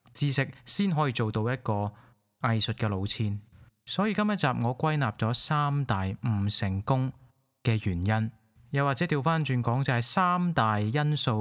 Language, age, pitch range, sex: Chinese, 20-39, 110-145 Hz, male